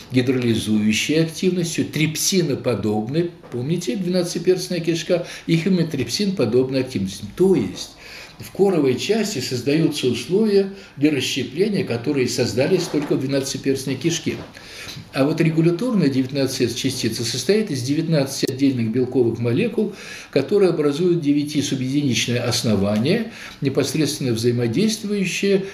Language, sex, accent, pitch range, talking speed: Russian, male, native, 120-170 Hz, 100 wpm